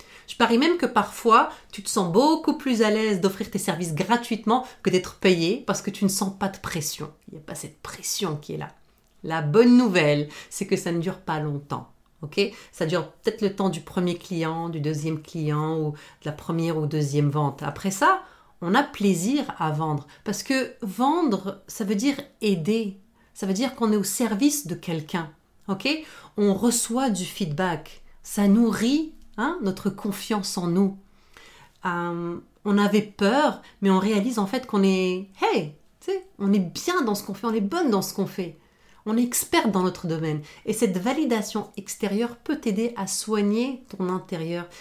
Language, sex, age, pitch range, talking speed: French, female, 40-59, 175-225 Hz, 195 wpm